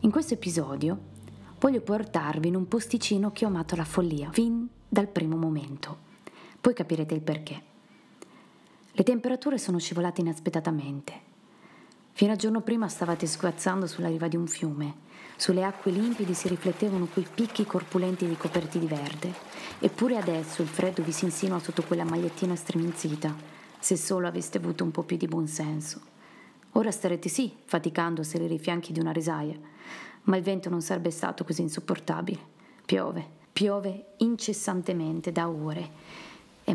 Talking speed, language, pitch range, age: 155 wpm, Italian, 165-200 Hz, 20-39